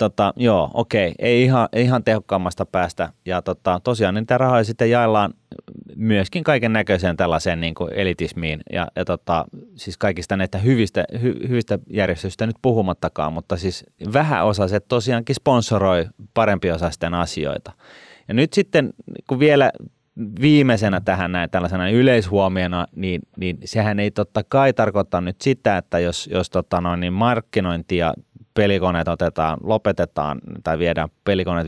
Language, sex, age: Finnish, male, 30-49